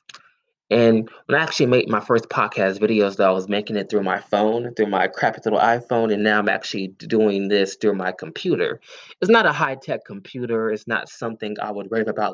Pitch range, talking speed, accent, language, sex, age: 100-120 Hz, 215 wpm, American, English, male, 20-39